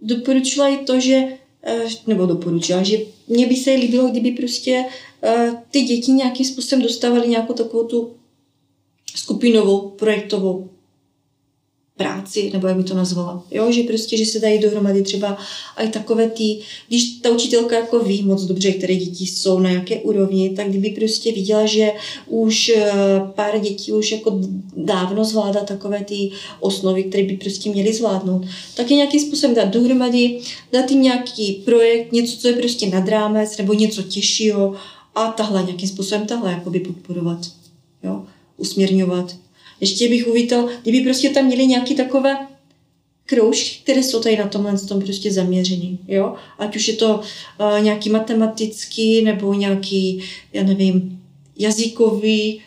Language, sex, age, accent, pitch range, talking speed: Czech, female, 30-49, native, 195-230 Hz, 150 wpm